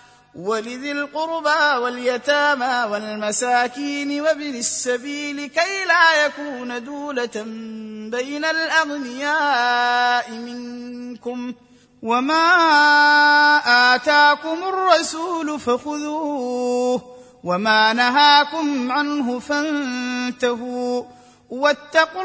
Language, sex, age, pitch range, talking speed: Arabic, male, 30-49, 245-295 Hz, 60 wpm